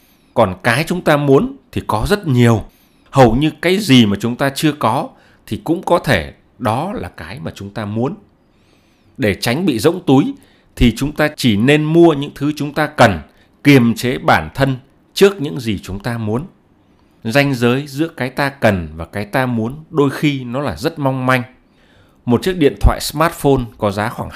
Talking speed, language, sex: 195 wpm, Vietnamese, male